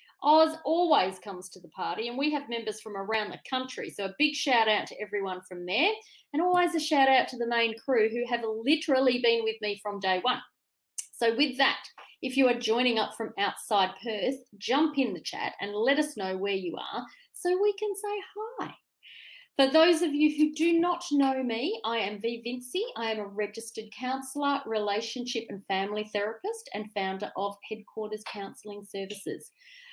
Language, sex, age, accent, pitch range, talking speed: English, female, 30-49, Australian, 215-295 Hz, 195 wpm